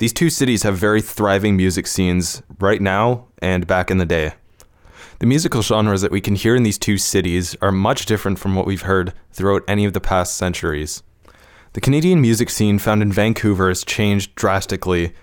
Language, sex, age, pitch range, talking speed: English, male, 20-39, 90-105 Hz, 195 wpm